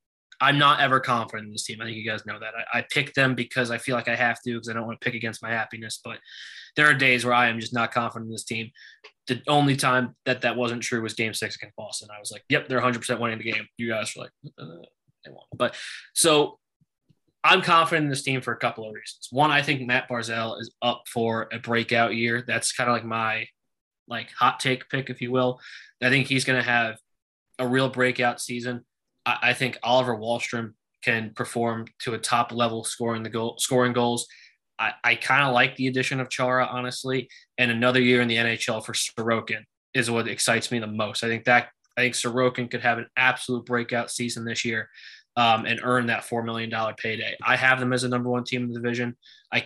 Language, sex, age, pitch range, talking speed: English, male, 20-39, 115-125 Hz, 230 wpm